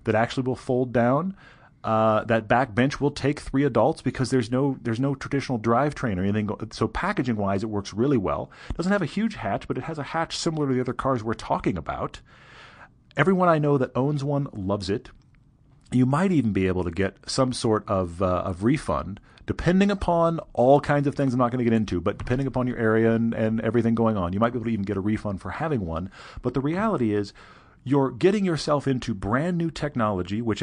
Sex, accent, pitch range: male, American, 105-140 Hz